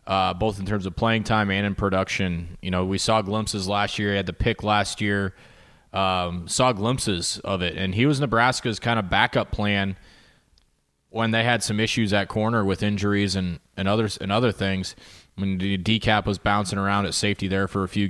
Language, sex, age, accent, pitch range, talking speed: English, male, 20-39, American, 95-110 Hz, 220 wpm